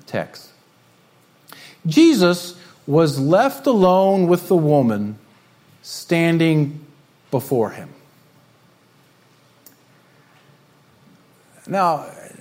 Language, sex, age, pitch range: English, male, 50-69, 140-180 Hz